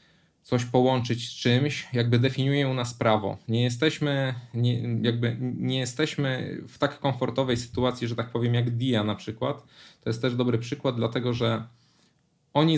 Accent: native